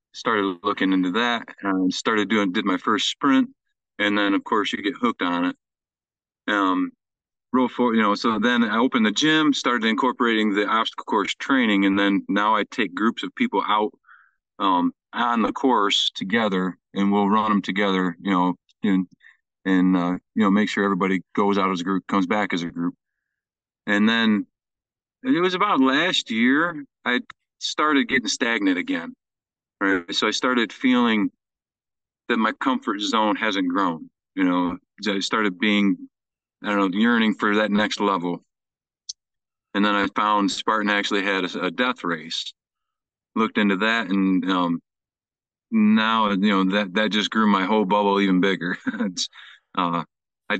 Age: 40-59